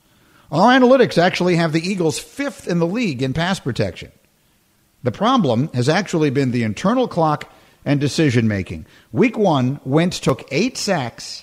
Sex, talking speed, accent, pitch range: male, 150 wpm, American, 130-185 Hz